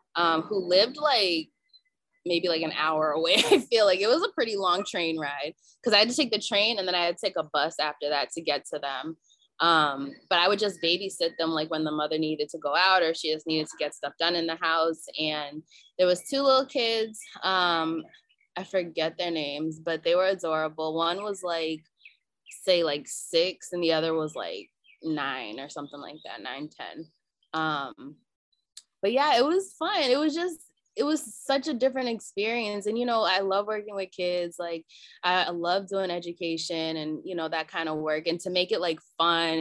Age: 20-39